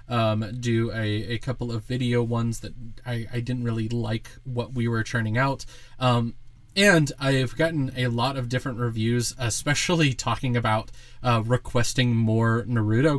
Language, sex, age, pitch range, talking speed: English, male, 20-39, 120-135 Hz, 160 wpm